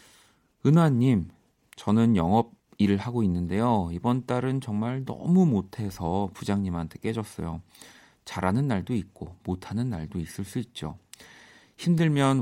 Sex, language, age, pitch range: male, Korean, 40-59, 90-120 Hz